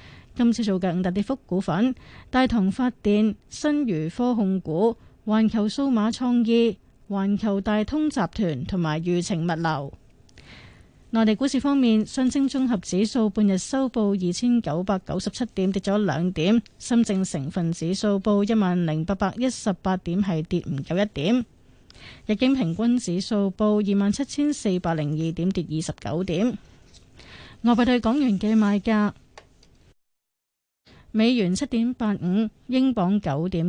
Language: Chinese